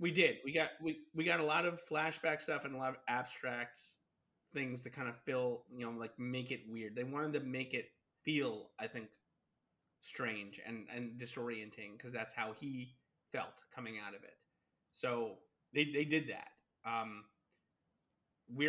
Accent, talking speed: American, 180 wpm